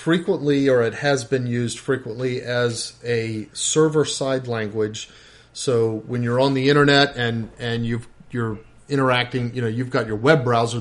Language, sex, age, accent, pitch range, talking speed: English, male, 40-59, American, 115-145 Hz, 165 wpm